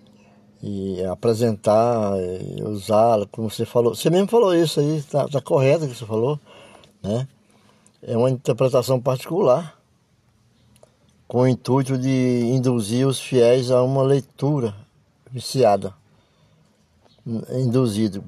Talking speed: 115 wpm